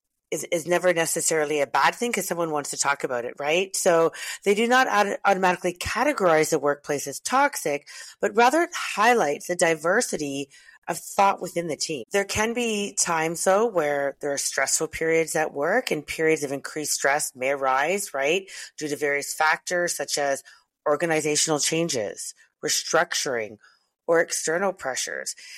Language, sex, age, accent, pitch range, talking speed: English, female, 40-59, American, 150-190 Hz, 160 wpm